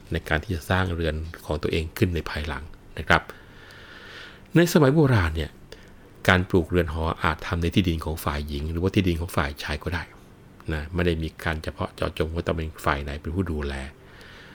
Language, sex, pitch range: Thai, male, 80-95 Hz